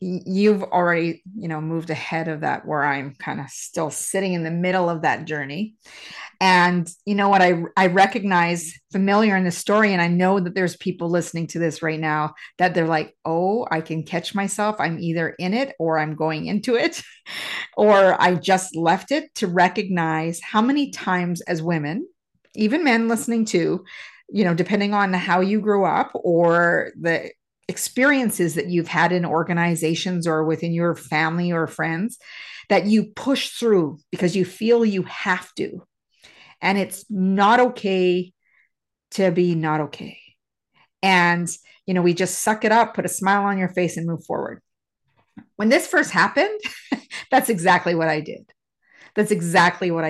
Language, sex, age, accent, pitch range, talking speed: English, female, 40-59, American, 165-210 Hz, 170 wpm